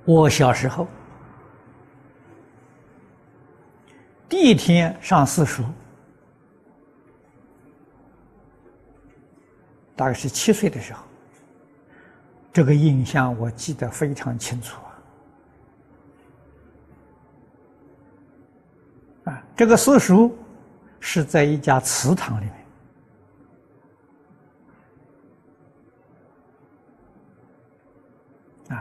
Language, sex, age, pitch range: Chinese, male, 60-79, 125-165 Hz